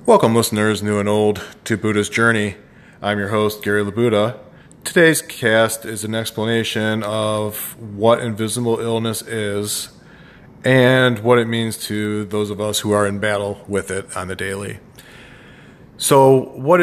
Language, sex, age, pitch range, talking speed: English, male, 40-59, 105-115 Hz, 150 wpm